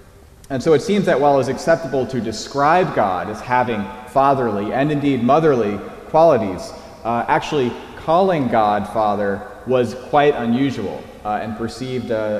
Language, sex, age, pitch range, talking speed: English, male, 20-39, 105-145 Hz, 140 wpm